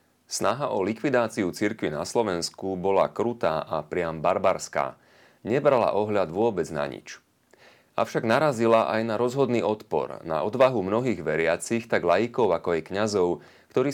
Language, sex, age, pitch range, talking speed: Slovak, male, 30-49, 95-120 Hz, 140 wpm